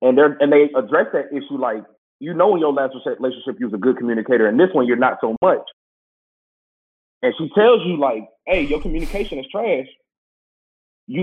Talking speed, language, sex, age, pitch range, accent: 200 wpm, English, male, 30-49, 130-180 Hz, American